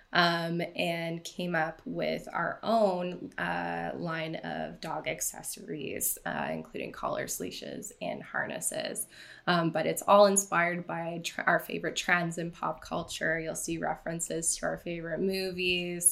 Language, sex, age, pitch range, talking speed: English, female, 20-39, 165-195 Hz, 140 wpm